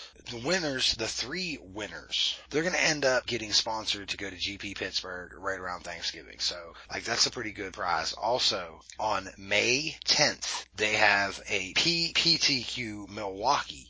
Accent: American